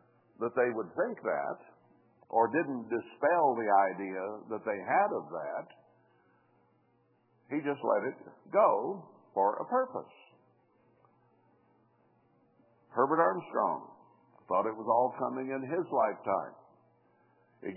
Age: 60-79